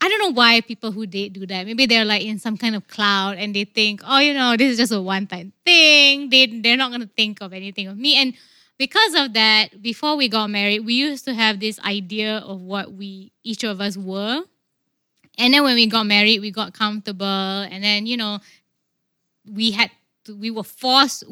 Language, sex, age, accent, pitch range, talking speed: English, female, 20-39, Malaysian, 195-235 Hz, 215 wpm